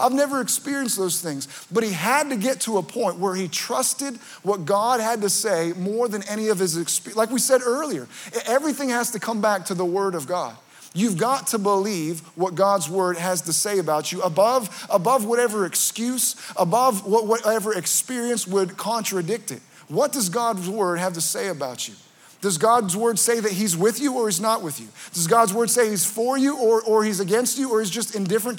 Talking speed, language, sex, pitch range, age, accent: 210 wpm, English, male, 190-240 Hz, 30-49, American